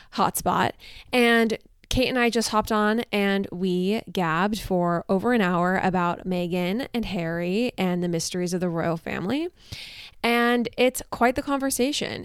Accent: American